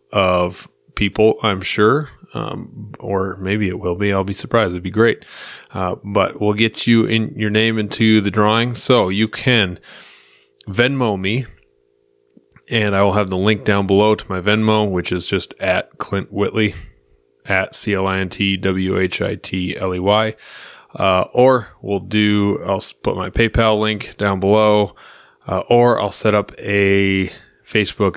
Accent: American